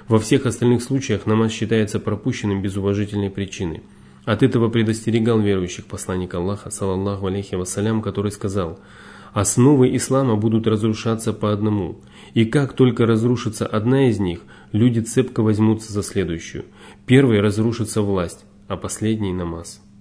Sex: male